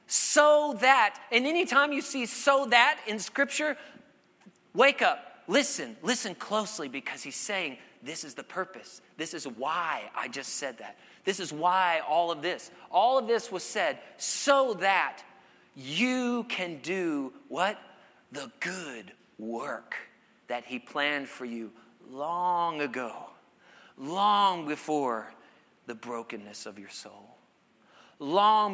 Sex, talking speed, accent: male, 135 wpm, American